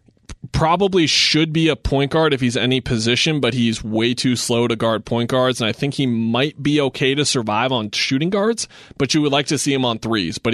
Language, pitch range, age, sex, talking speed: English, 115-130 Hz, 20-39, male, 235 wpm